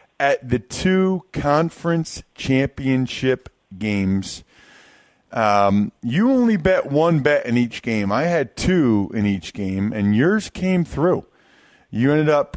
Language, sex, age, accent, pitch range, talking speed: English, male, 40-59, American, 110-160 Hz, 135 wpm